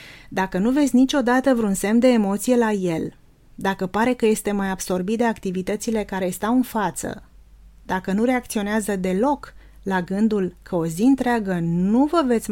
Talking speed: 170 wpm